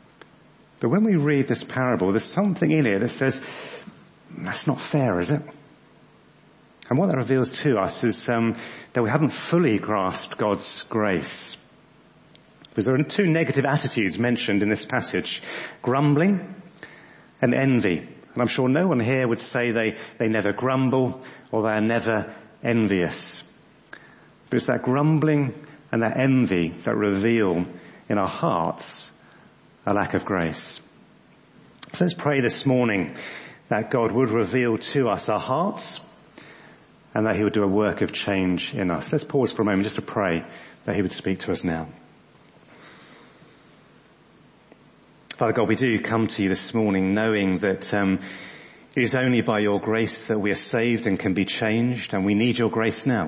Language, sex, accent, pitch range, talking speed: English, male, British, 105-130 Hz, 165 wpm